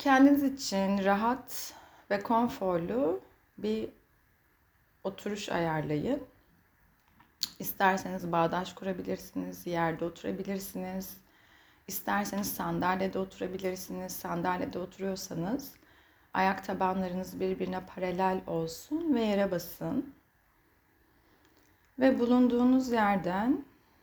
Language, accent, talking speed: Turkish, native, 70 wpm